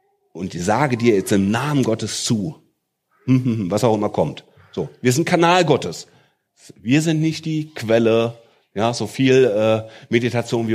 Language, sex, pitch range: German, male, 115-170 Hz